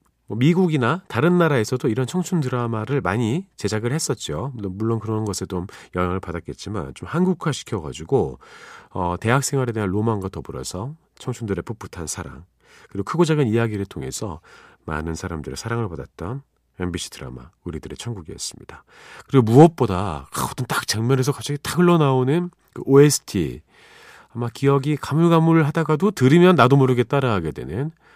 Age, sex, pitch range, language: 40-59, male, 90-145 Hz, Korean